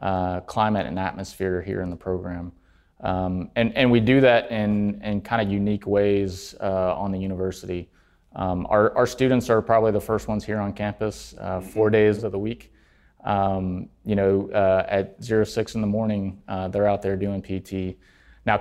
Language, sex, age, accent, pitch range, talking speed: English, male, 30-49, American, 95-110 Hz, 190 wpm